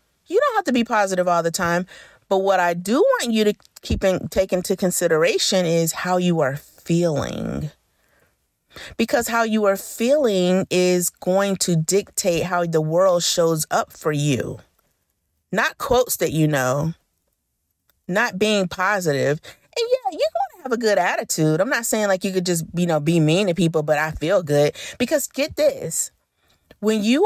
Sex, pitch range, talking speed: female, 170-220 Hz, 180 wpm